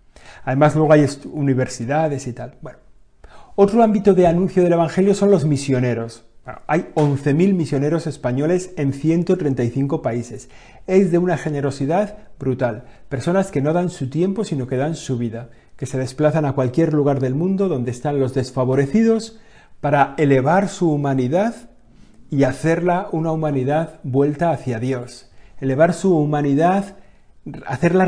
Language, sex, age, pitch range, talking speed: Spanish, male, 40-59, 130-175 Hz, 140 wpm